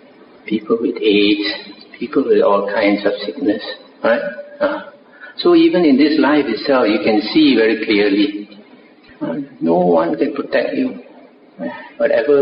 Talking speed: 145 wpm